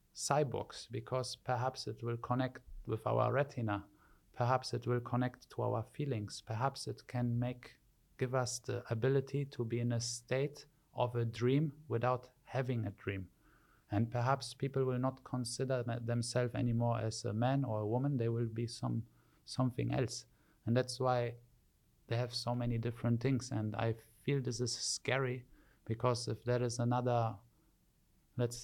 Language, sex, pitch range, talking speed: English, male, 115-130 Hz, 160 wpm